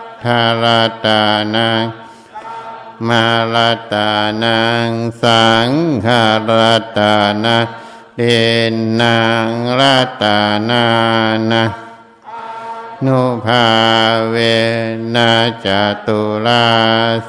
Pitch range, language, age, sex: 115-120 Hz, Thai, 60-79, male